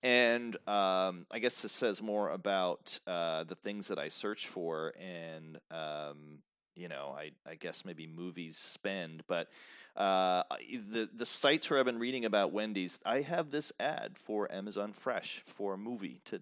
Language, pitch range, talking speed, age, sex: English, 95-120 Hz, 170 wpm, 30-49, male